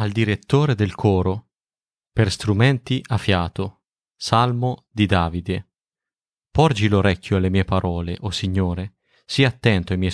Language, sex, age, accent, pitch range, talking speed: Italian, male, 30-49, native, 95-110 Hz, 135 wpm